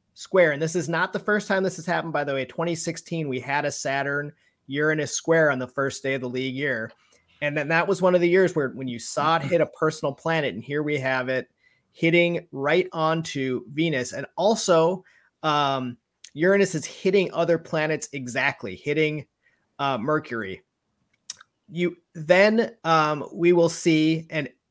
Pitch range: 135-165 Hz